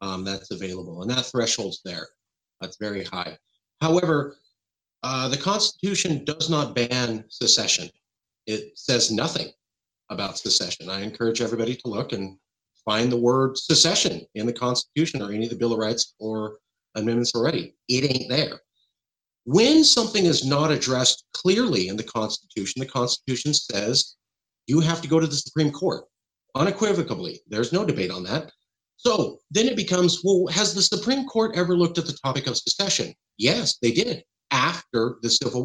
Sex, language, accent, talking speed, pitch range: male, English, American, 165 wpm, 120-165 Hz